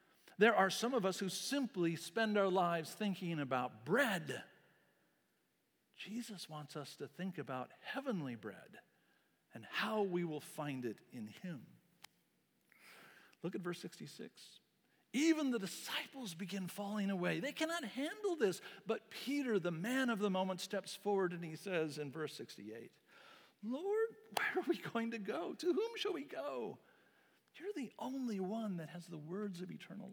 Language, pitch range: English, 175-235 Hz